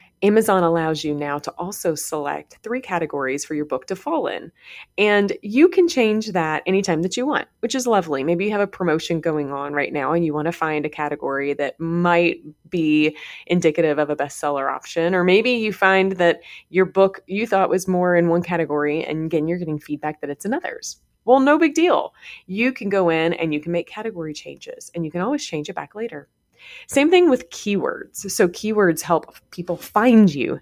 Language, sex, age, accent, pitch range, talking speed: English, female, 30-49, American, 160-205 Hz, 205 wpm